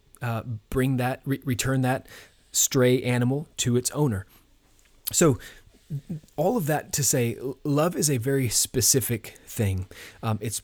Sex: male